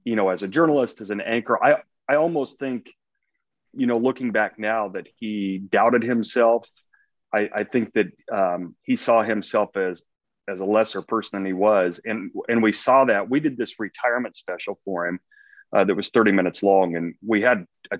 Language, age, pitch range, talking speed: English, 30-49, 105-140 Hz, 195 wpm